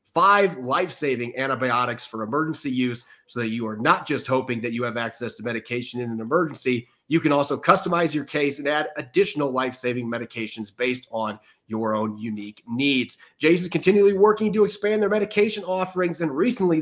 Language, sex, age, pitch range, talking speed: English, male, 30-49, 125-175 Hz, 185 wpm